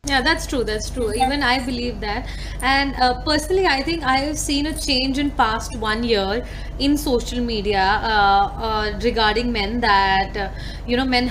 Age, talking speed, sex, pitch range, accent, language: 20-39, 185 wpm, female, 240-315 Hz, Indian, English